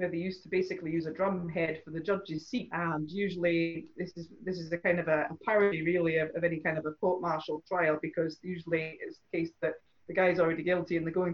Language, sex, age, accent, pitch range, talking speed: English, female, 30-49, British, 170-200 Hz, 245 wpm